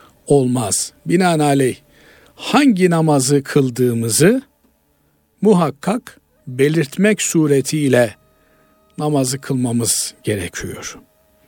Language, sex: Turkish, male